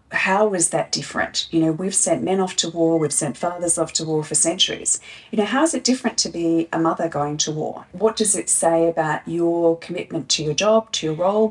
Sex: female